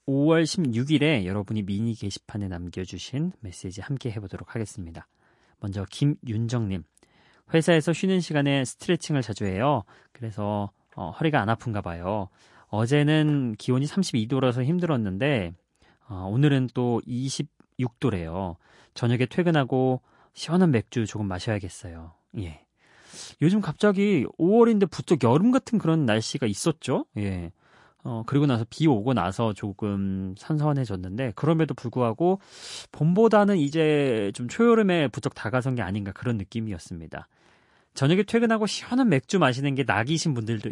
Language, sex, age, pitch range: Korean, male, 30-49, 105-160 Hz